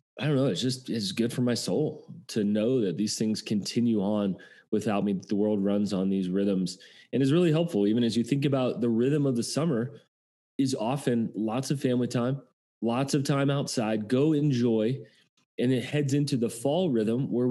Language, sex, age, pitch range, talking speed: English, male, 30-49, 115-140 Hz, 205 wpm